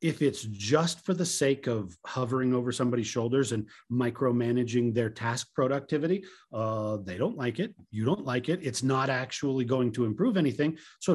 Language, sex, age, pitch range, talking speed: English, male, 40-59, 120-170 Hz, 180 wpm